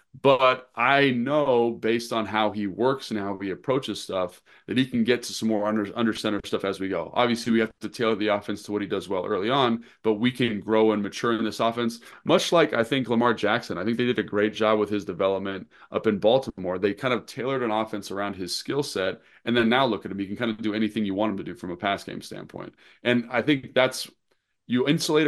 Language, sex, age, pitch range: English, male, 30-49, 105-120 Hz